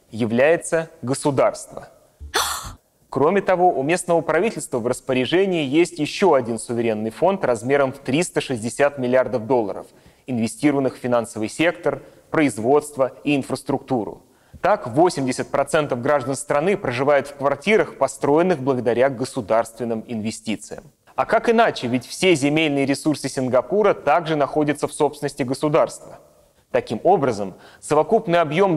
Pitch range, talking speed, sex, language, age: 130-160 Hz, 115 wpm, male, Russian, 30-49